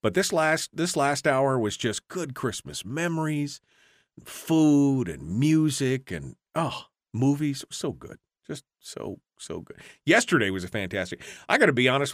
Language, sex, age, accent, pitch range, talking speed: English, male, 40-59, American, 100-140 Hz, 165 wpm